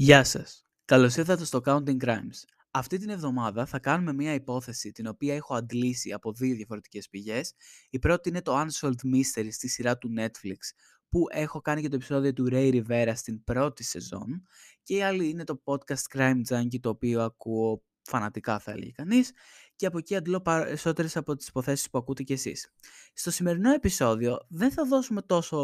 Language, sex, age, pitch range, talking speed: Greek, male, 20-39, 125-165 Hz, 180 wpm